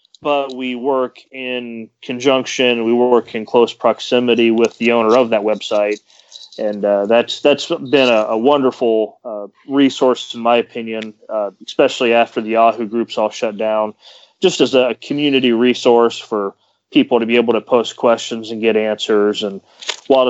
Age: 30-49